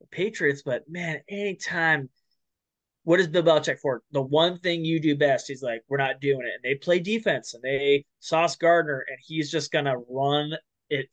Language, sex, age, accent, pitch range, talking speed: English, male, 20-39, American, 135-165 Hz, 195 wpm